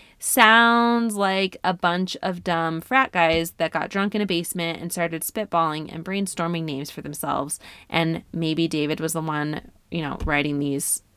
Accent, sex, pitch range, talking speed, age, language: American, female, 160-200 Hz, 170 wpm, 20-39, English